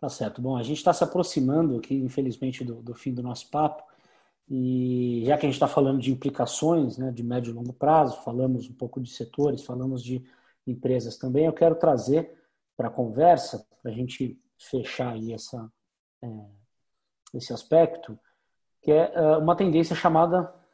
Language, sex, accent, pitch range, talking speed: Portuguese, male, Brazilian, 130-160 Hz, 170 wpm